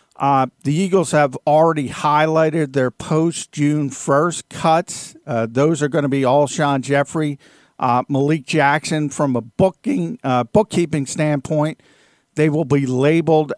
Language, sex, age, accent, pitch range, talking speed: English, male, 50-69, American, 125-155 Hz, 140 wpm